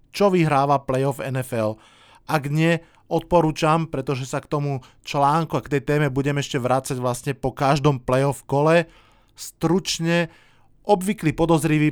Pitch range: 125-150 Hz